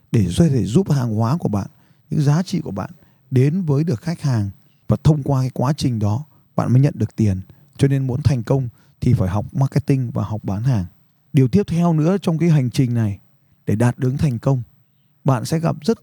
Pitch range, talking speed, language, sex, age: 120-150 Hz, 220 wpm, Vietnamese, male, 20-39